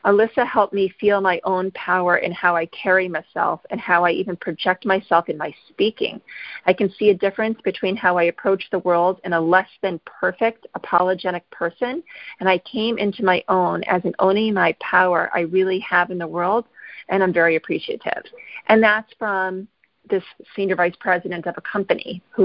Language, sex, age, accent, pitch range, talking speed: English, female, 40-59, American, 175-220 Hz, 190 wpm